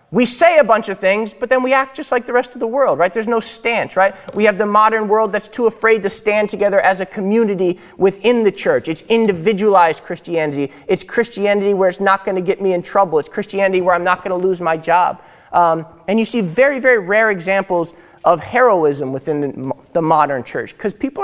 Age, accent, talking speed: 30-49, American, 225 wpm